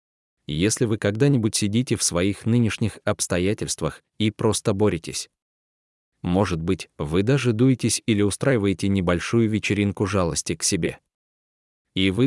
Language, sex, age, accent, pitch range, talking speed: Russian, male, 20-39, native, 90-125 Hz, 120 wpm